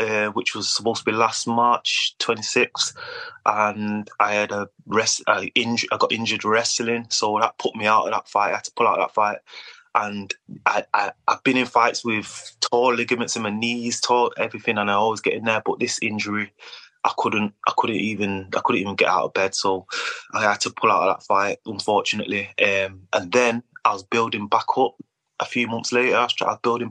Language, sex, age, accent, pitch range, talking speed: English, male, 20-39, British, 100-115 Hz, 220 wpm